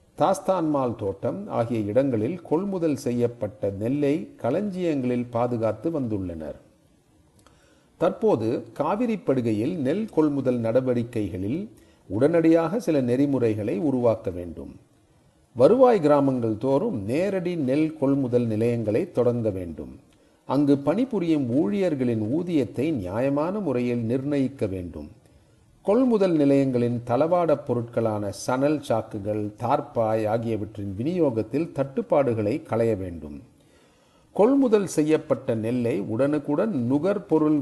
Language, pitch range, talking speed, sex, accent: Tamil, 110-150 Hz, 90 wpm, male, native